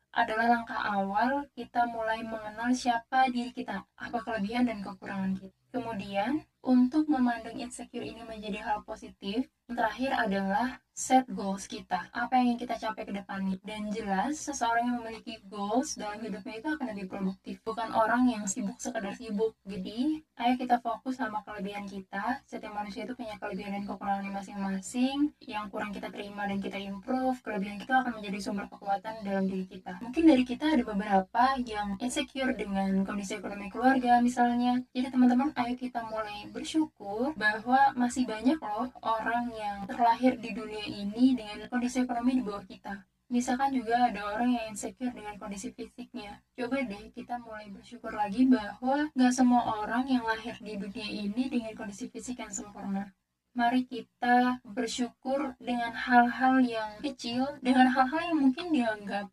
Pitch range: 210-250 Hz